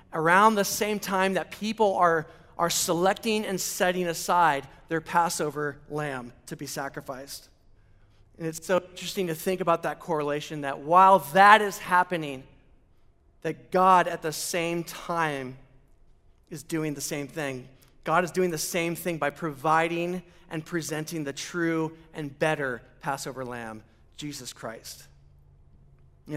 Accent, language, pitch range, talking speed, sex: American, English, 140-185 Hz, 140 wpm, male